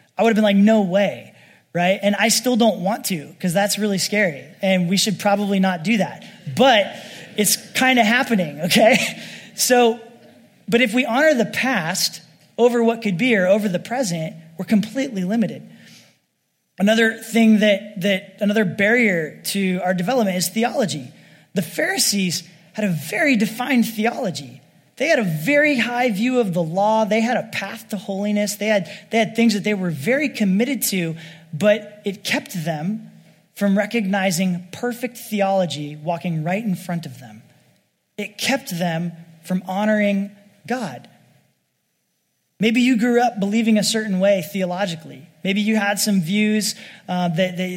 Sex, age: male, 20-39